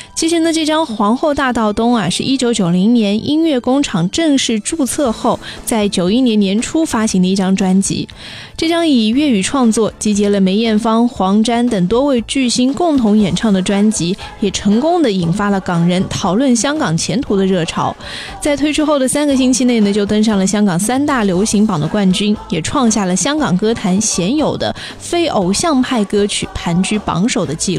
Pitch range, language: 200-265 Hz, Chinese